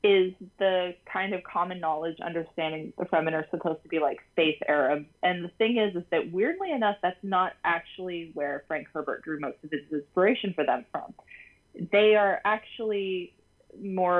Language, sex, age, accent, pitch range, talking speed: English, female, 20-39, American, 155-190 Hz, 180 wpm